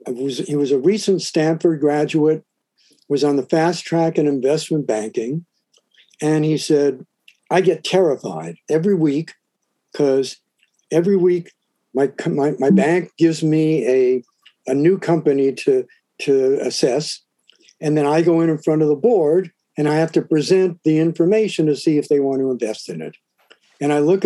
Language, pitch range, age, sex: English, 145-180 Hz, 60-79, male